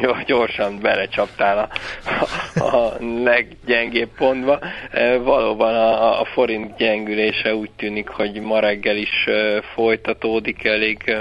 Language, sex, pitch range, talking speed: Hungarian, male, 105-115 Hz, 105 wpm